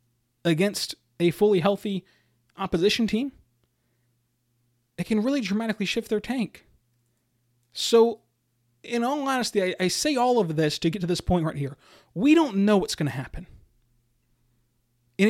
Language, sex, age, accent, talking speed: English, male, 30-49, American, 150 wpm